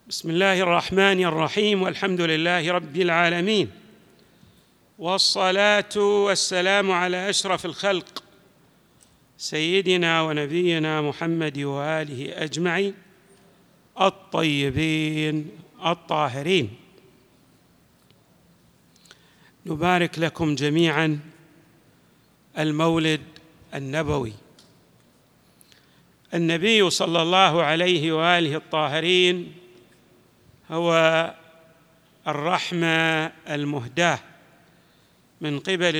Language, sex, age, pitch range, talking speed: Arabic, male, 50-69, 155-185 Hz, 60 wpm